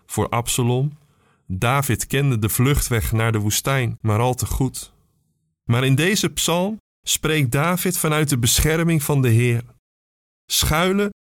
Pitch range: 110-145 Hz